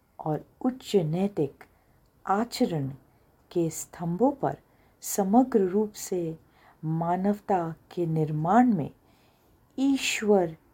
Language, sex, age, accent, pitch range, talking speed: Hindi, female, 50-69, native, 150-200 Hz, 85 wpm